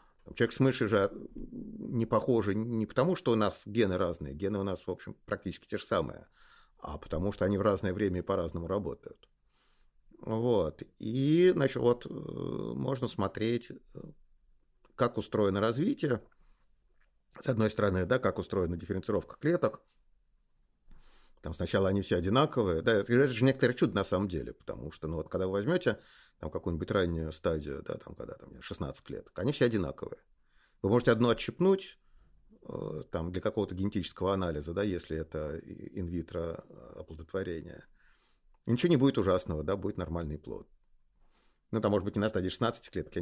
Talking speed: 160 wpm